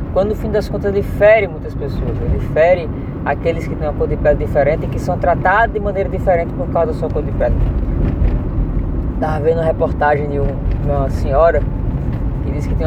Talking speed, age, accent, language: 195 wpm, 20-39, Brazilian, Portuguese